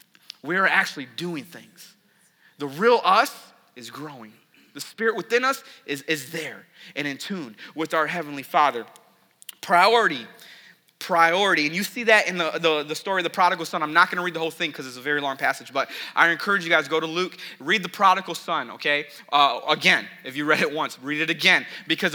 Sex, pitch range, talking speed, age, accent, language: male, 155-210 Hz, 210 wpm, 30-49, American, English